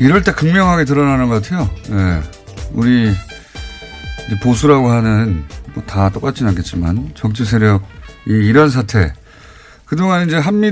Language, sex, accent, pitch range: Korean, male, native, 95-165 Hz